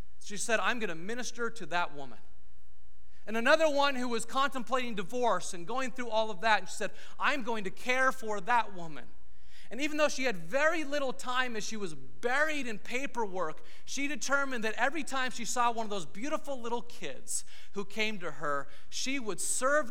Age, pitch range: 30-49, 160-245 Hz